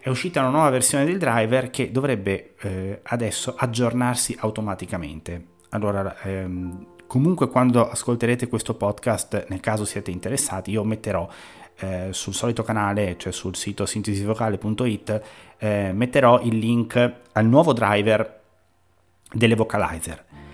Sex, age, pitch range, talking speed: male, 30-49, 95-120 Hz, 125 wpm